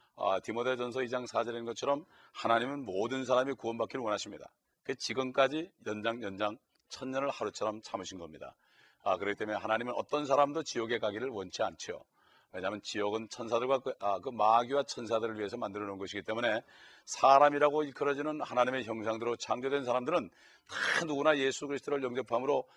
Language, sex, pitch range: Korean, male, 105-135 Hz